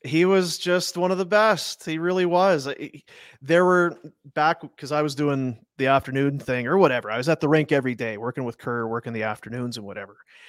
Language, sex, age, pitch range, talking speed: English, male, 30-49, 130-180 Hz, 210 wpm